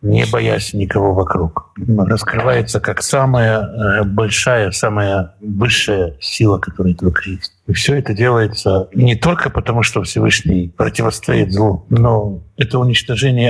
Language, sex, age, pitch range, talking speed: Russian, male, 60-79, 100-125 Hz, 125 wpm